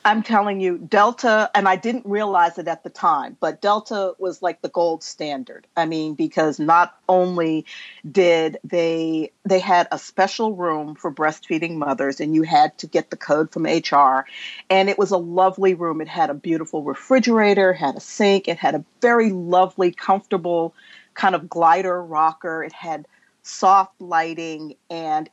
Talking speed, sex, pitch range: 170 wpm, female, 160-200 Hz